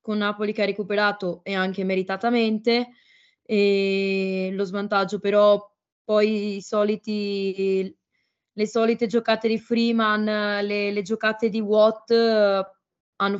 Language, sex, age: Italian, female, 20-39